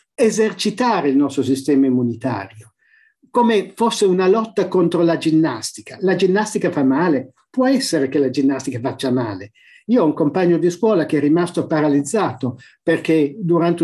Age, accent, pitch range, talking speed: 50-69, native, 155-215 Hz, 150 wpm